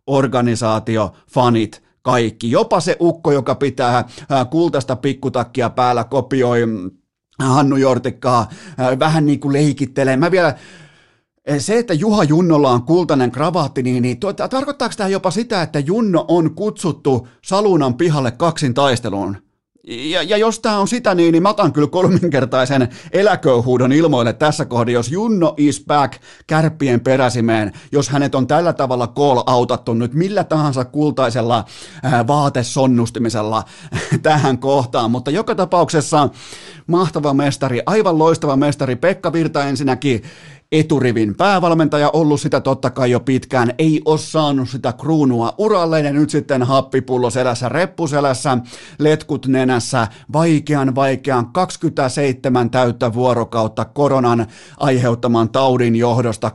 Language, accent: Finnish, native